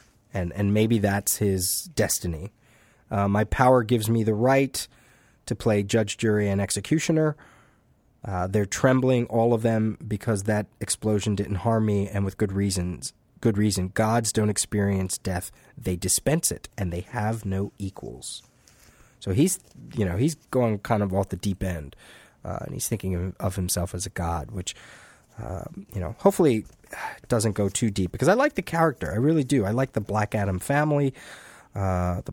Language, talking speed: English, 180 wpm